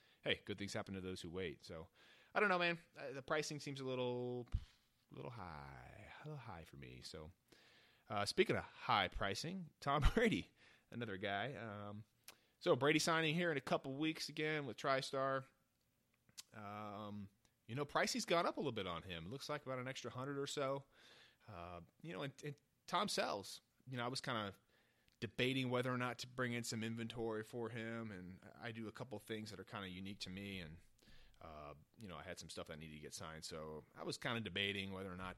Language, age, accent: English, 30-49, American